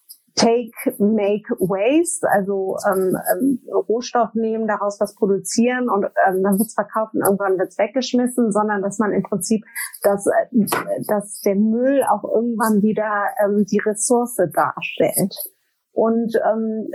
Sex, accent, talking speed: female, German, 130 wpm